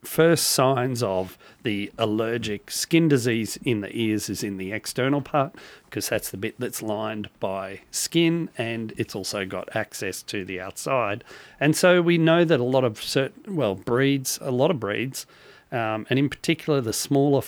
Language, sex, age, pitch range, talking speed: English, male, 40-59, 105-140 Hz, 180 wpm